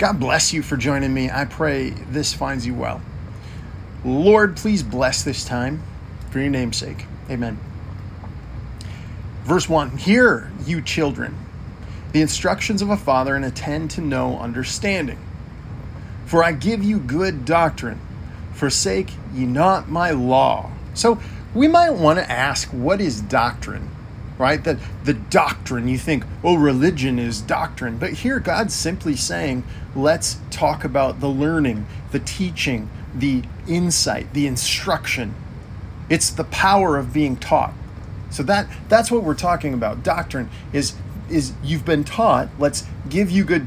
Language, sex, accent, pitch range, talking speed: English, male, American, 115-160 Hz, 145 wpm